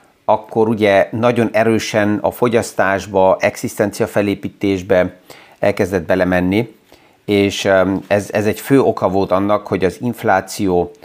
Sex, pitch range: male, 95-115 Hz